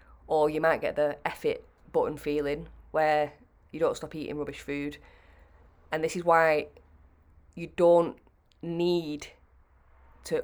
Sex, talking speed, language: female, 140 wpm, English